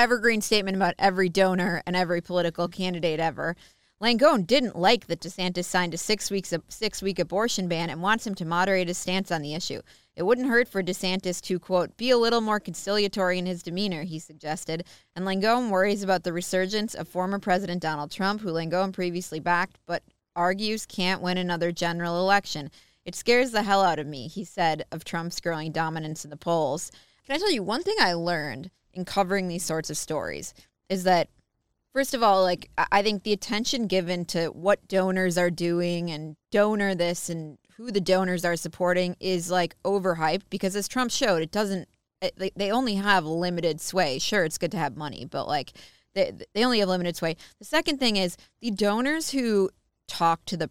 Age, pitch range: 20-39, 170-205 Hz